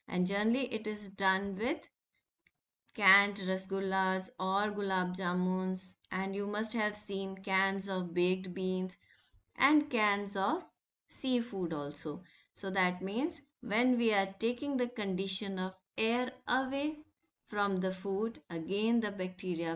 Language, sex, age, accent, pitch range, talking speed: English, female, 20-39, Indian, 185-230 Hz, 130 wpm